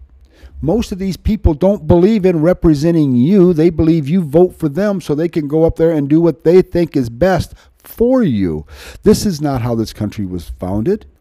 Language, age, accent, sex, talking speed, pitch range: English, 50-69, American, male, 205 wpm, 90-130 Hz